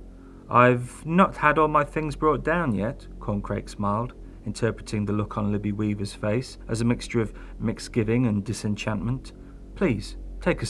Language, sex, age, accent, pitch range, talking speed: English, male, 40-59, British, 105-140 Hz, 155 wpm